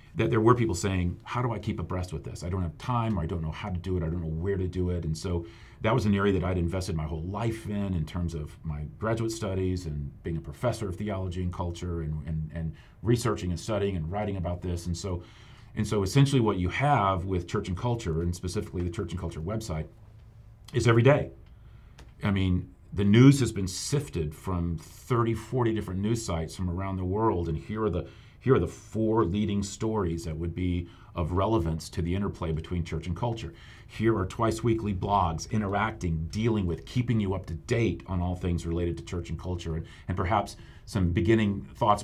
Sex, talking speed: male, 225 wpm